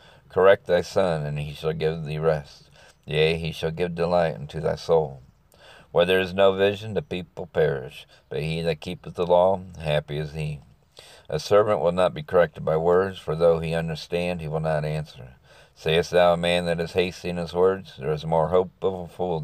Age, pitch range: 50-69, 75-90 Hz